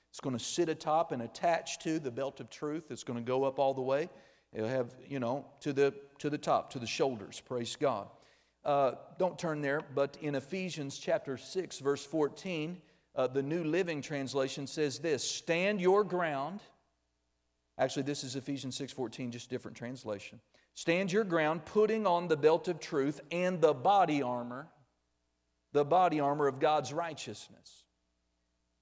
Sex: male